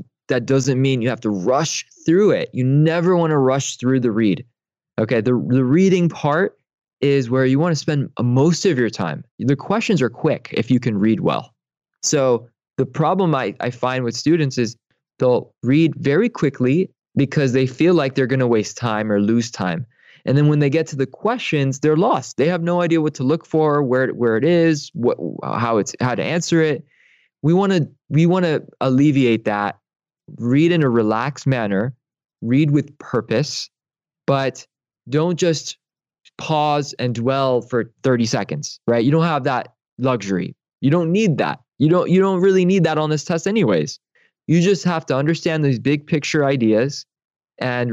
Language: English